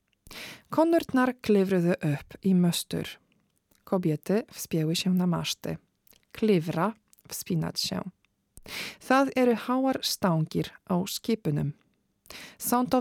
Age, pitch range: 40-59, 170-215 Hz